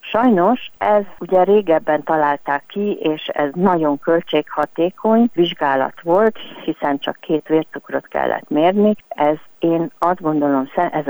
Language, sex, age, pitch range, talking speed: Hungarian, female, 50-69, 150-200 Hz, 125 wpm